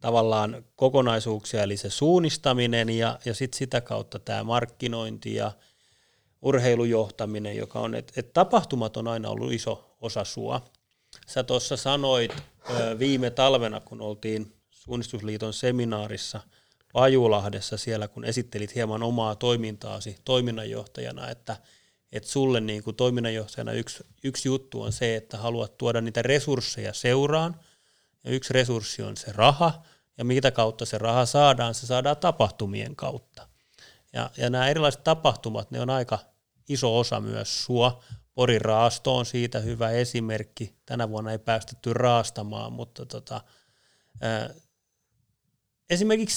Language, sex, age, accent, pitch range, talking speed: Finnish, male, 30-49, native, 110-130 Hz, 130 wpm